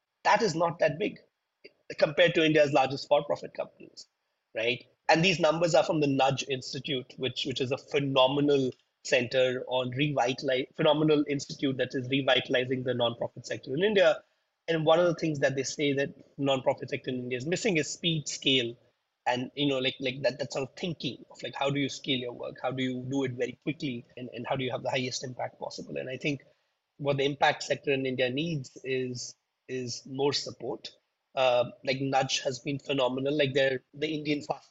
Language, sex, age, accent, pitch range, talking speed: English, male, 30-49, Indian, 130-150 Hz, 200 wpm